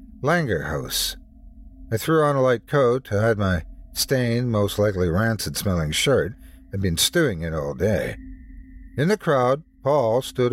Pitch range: 105-150 Hz